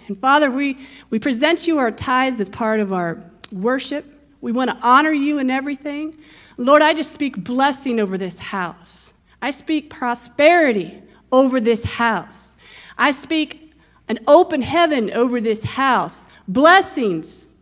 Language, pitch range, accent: English, 225-300 Hz, American